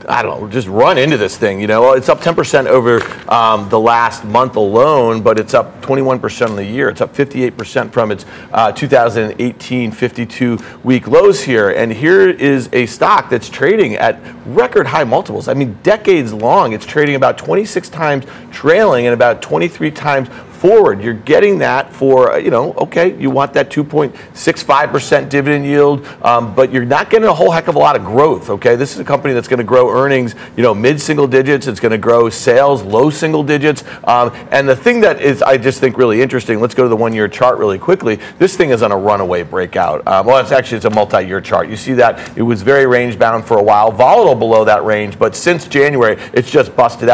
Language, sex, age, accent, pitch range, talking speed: English, male, 40-59, American, 115-145 Hz, 205 wpm